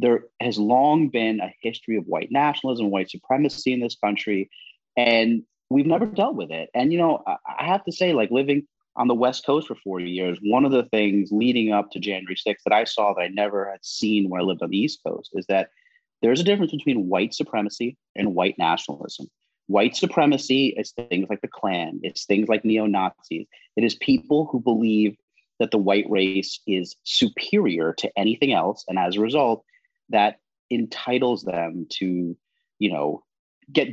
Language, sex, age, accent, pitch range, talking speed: English, male, 30-49, American, 100-135 Hz, 190 wpm